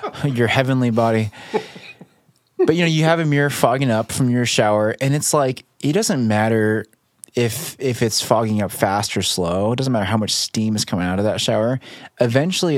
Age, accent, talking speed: 20-39, American, 195 wpm